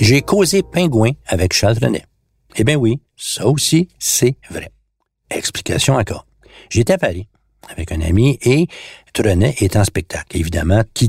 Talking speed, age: 150 wpm, 60-79